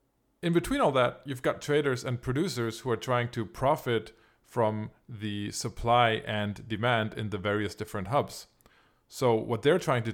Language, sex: English, male